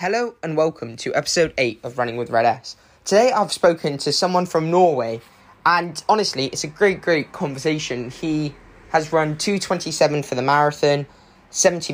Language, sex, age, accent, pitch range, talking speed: English, male, 10-29, British, 130-160 Hz, 165 wpm